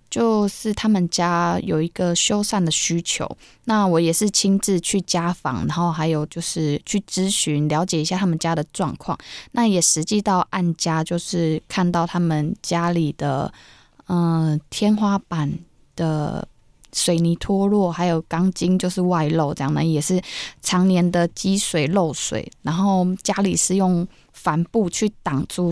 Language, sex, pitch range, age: Chinese, female, 160-190 Hz, 20-39